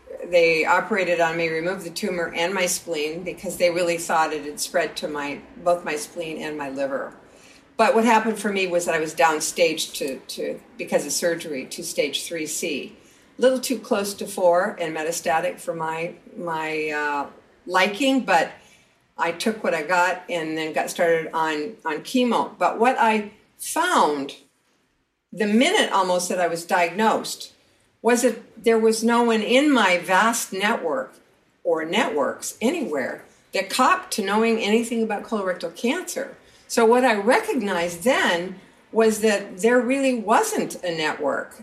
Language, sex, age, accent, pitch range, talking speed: English, female, 50-69, American, 170-230 Hz, 165 wpm